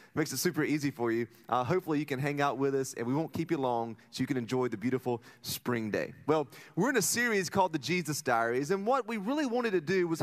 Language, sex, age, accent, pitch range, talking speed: English, male, 30-49, American, 130-180 Hz, 265 wpm